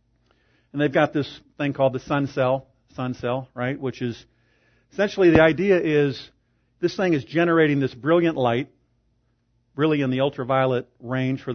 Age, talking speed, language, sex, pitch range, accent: 50-69, 160 wpm, English, male, 120-155 Hz, American